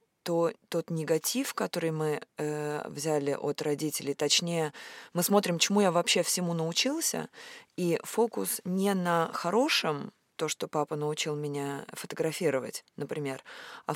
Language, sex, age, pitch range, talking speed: Russian, female, 20-39, 165-215 Hz, 130 wpm